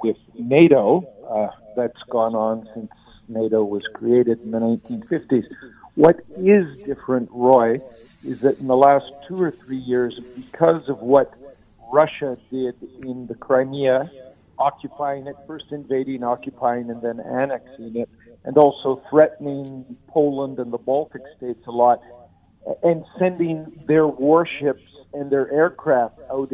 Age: 50-69